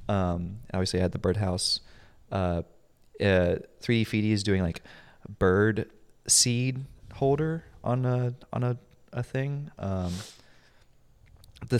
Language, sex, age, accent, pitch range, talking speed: English, male, 20-39, American, 95-115 Hz, 120 wpm